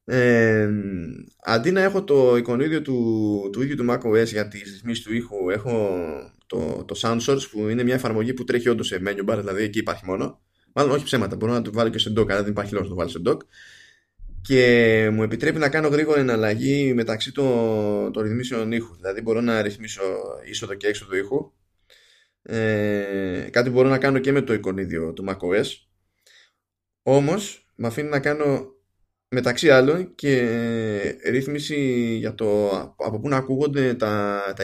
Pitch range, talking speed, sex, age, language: 100-130 Hz, 175 wpm, male, 20-39, Greek